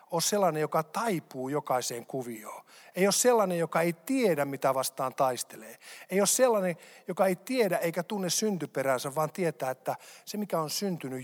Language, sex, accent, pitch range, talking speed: Finnish, male, native, 140-190 Hz, 165 wpm